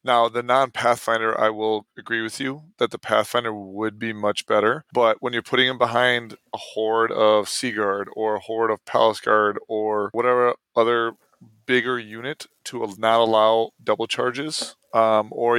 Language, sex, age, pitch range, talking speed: English, male, 20-39, 110-125 Hz, 165 wpm